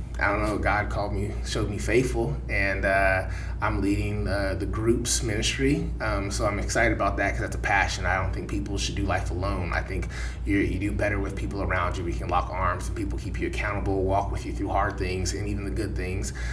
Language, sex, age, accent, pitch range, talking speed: English, male, 20-39, American, 95-110 Hz, 230 wpm